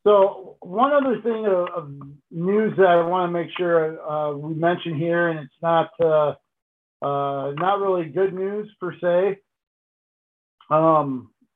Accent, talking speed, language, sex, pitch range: American, 150 wpm, English, male, 150-175 Hz